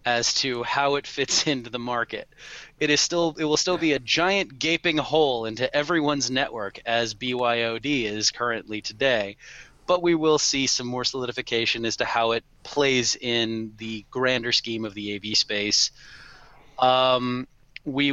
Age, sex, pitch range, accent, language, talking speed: 30-49, male, 110-125 Hz, American, English, 160 wpm